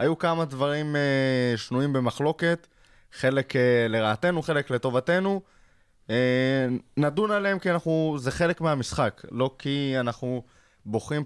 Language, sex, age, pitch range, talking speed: Hebrew, male, 20-39, 115-150 Hz, 125 wpm